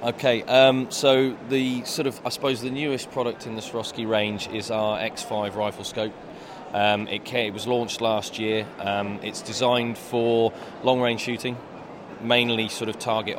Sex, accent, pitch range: male, British, 100-115 Hz